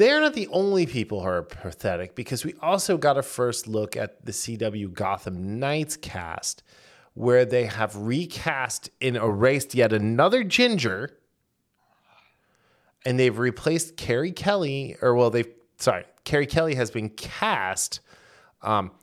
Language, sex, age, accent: English, male, 20-39, American